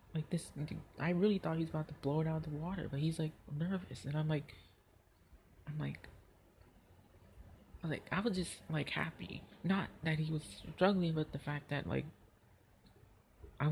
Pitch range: 100-165 Hz